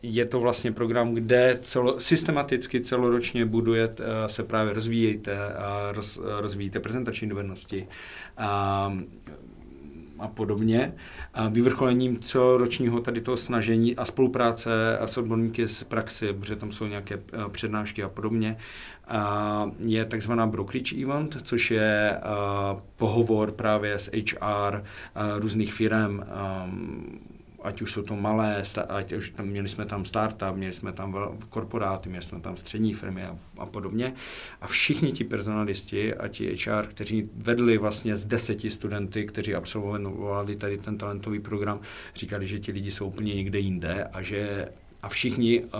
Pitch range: 100-115 Hz